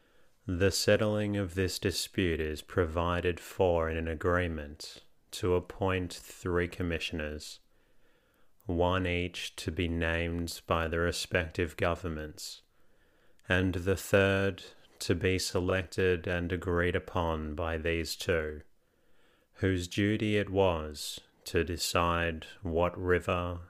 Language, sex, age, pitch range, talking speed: English, male, 30-49, 85-95 Hz, 110 wpm